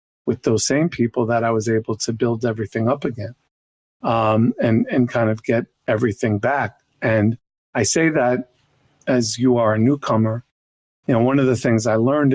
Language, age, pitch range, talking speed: English, 50-69, 110-130 Hz, 185 wpm